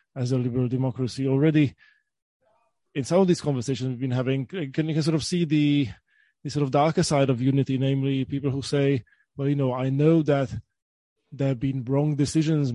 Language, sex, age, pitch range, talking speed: English, male, 20-39, 130-145 Hz, 200 wpm